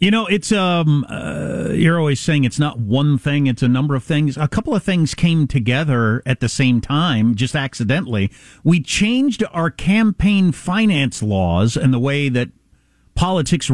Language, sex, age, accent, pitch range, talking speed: English, male, 50-69, American, 120-170 Hz, 175 wpm